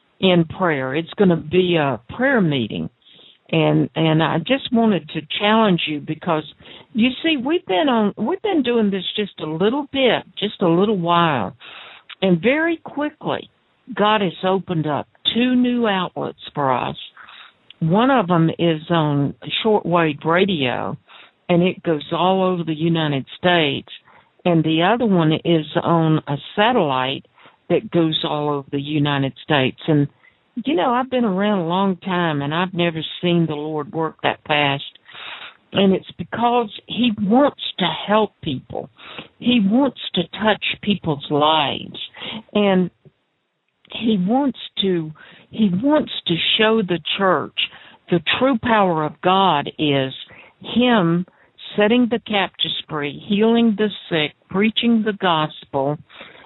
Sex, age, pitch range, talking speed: female, 60-79, 160-220 Hz, 145 wpm